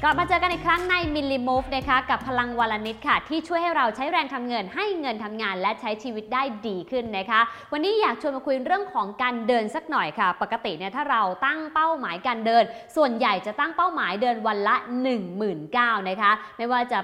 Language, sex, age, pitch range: English, female, 20-39, 220-300 Hz